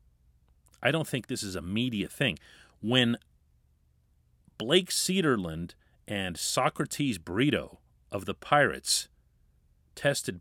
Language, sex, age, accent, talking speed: English, male, 40-59, American, 105 wpm